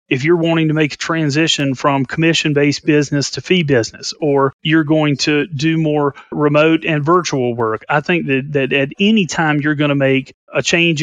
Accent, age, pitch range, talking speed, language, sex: American, 30-49, 130-155 Hz, 200 wpm, English, male